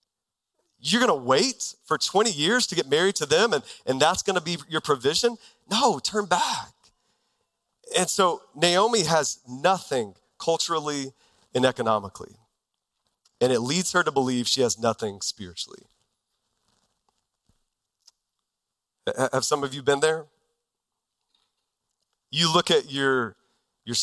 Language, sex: English, male